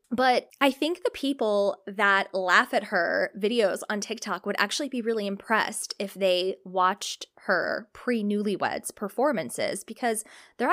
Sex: female